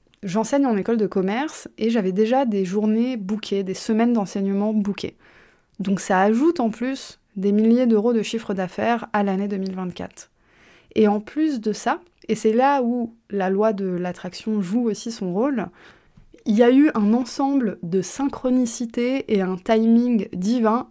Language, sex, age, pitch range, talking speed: French, female, 20-39, 195-235 Hz, 165 wpm